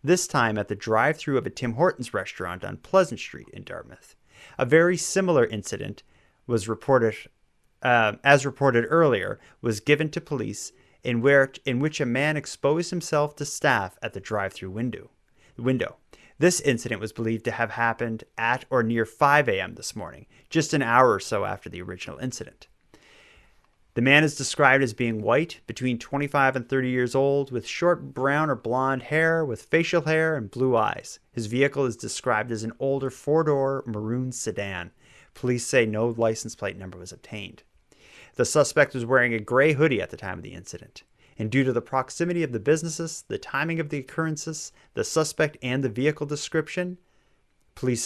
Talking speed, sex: 180 wpm, male